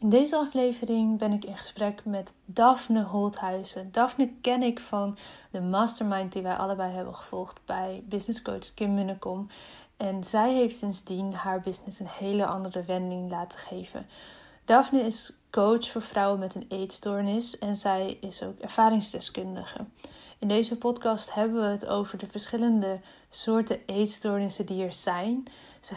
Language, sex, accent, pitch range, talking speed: Dutch, female, Dutch, 195-230 Hz, 150 wpm